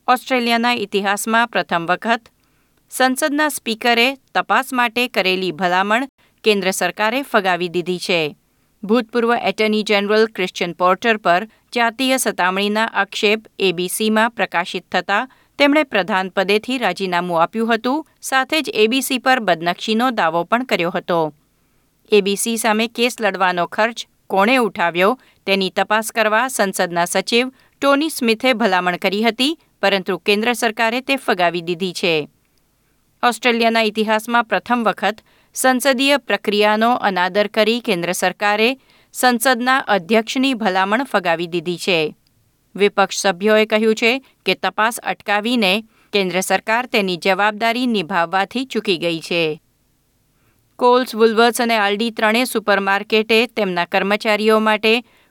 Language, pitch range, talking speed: Gujarati, 185-235 Hz, 115 wpm